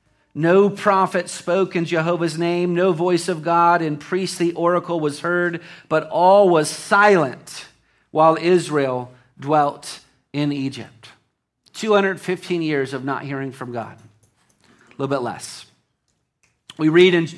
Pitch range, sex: 140-185 Hz, male